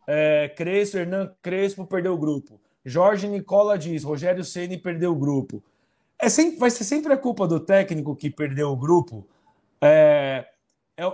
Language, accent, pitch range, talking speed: Portuguese, Brazilian, 140-185 Hz, 160 wpm